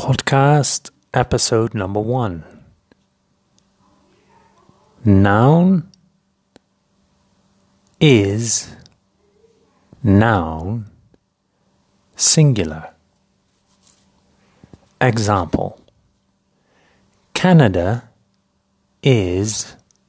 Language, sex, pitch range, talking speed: English, male, 95-135 Hz, 35 wpm